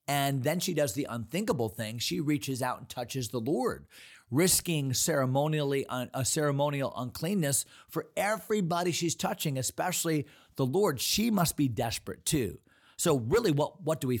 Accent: American